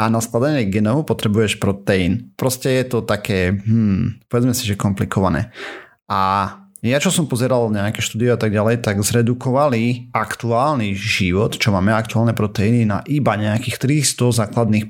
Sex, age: male, 30-49